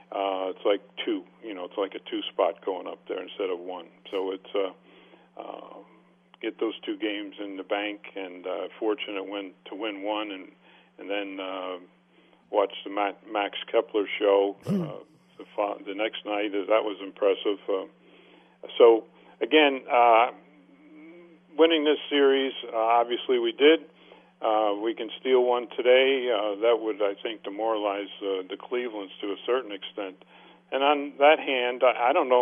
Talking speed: 165 wpm